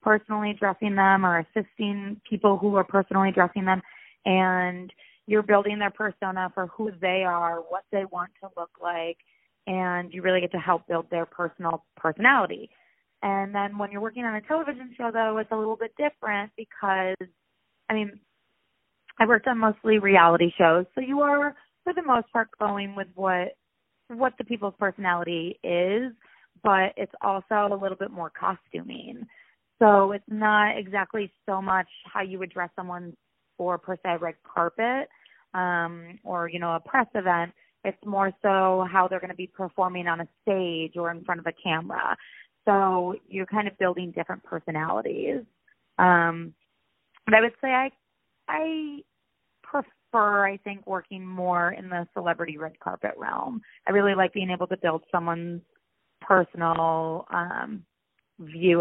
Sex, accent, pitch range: female, American, 175-215 Hz